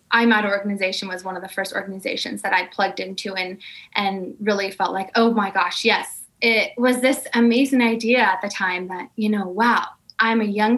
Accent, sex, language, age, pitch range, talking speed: American, female, English, 20-39, 200-240 Hz, 200 wpm